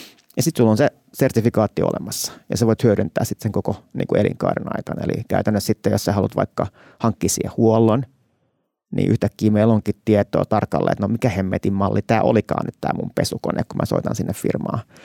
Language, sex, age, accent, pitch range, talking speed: Finnish, male, 30-49, native, 105-125 Hz, 190 wpm